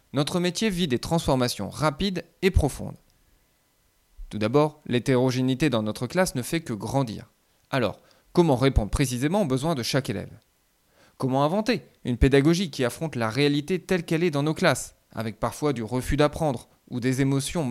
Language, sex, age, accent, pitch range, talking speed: French, male, 20-39, French, 120-160 Hz, 165 wpm